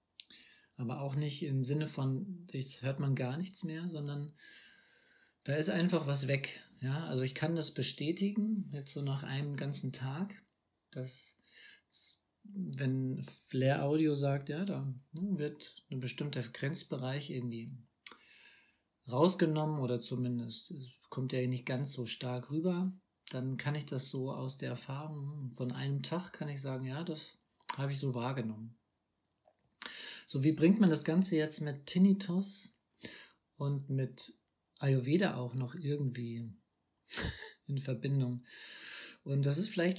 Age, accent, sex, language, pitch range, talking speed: 50-69, German, male, German, 130-155 Hz, 145 wpm